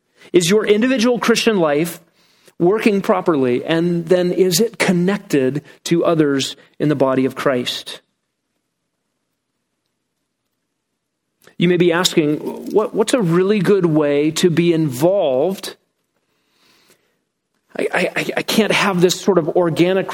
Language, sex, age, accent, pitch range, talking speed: English, male, 40-59, American, 160-200 Hz, 120 wpm